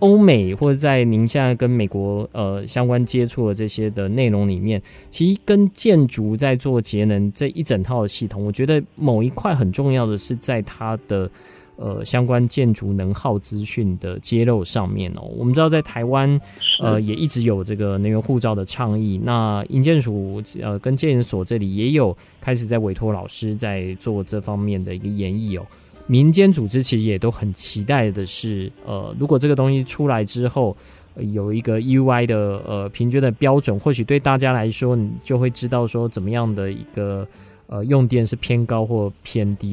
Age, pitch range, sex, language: 20-39, 100-130 Hz, male, Chinese